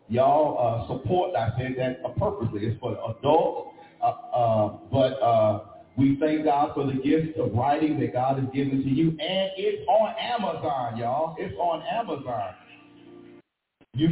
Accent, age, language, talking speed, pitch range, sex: American, 50-69, English, 155 wpm, 105-140 Hz, male